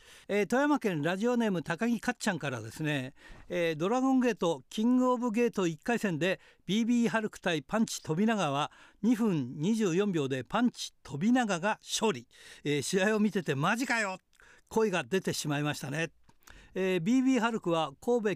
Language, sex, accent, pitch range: Japanese, male, native, 165-210 Hz